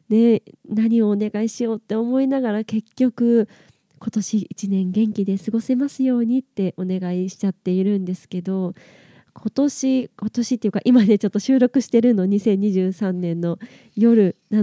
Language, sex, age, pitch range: Japanese, female, 20-39, 190-240 Hz